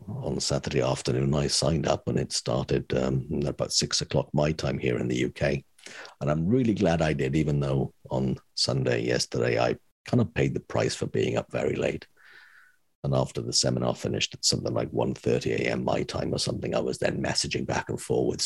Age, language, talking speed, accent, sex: 50-69, English, 210 wpm, British, male